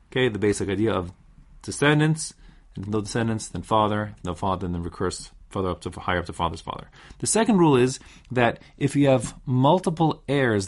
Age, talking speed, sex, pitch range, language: 30-49, 175 wpm, male, 100-140 Hz, English